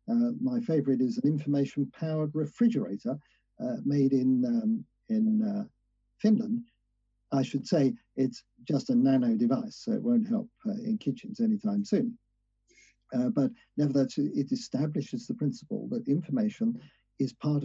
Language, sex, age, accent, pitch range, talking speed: English, male, 50-69, British, 140-235 Hz, 145 wpm